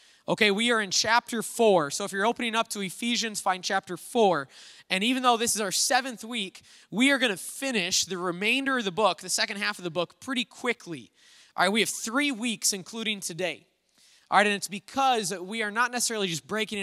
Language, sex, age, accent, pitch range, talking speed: English, male, 20-39, American, 180-230 Hz, 220 wpm